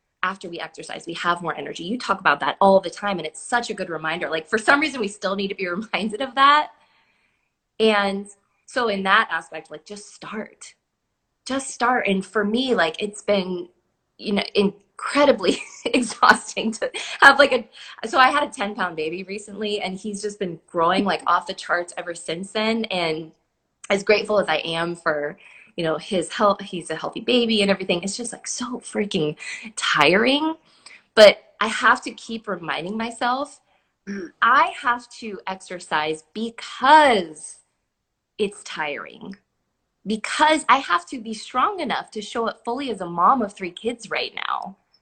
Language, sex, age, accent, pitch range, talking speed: English, female, 20-39, American, 185-240 Hz, 175 wpm